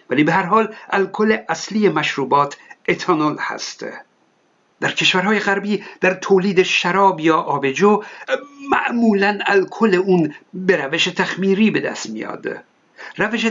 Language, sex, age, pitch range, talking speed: Persian, male, 60-79, 160-215 Hz, 120 wpm